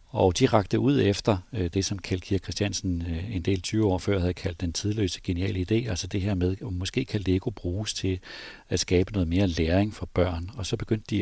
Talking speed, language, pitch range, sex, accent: 220 wpm, Danish, 90-105 Hz, male, native